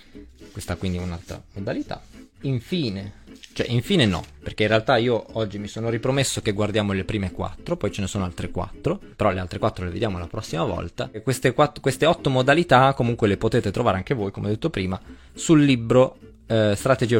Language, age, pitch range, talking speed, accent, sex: Italian, 20-39, 95-130 Hz, 200 wpm, native, male